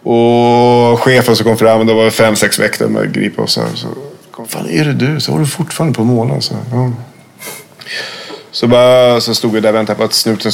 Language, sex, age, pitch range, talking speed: English, male, 30-49, 110-125 Hz, 230 wpm